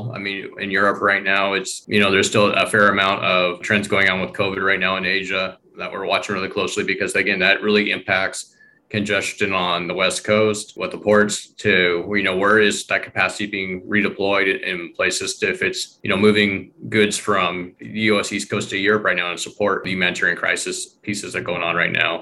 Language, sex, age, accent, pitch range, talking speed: English, male, 20-39, American, 90-105 Hz, 215 wpm